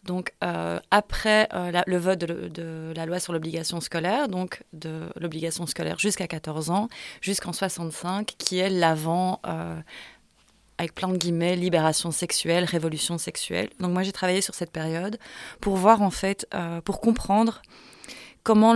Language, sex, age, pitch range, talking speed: French, female, 30-49, 170-205 Hz, 165 wpm